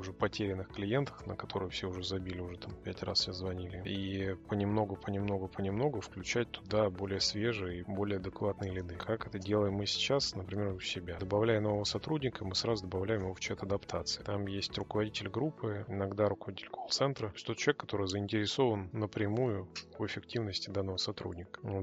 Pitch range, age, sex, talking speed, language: 95-110 Hz, 20-39, male, 165 wpm, Russian